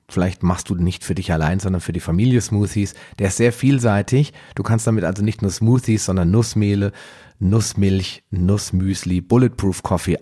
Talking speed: 170 wpm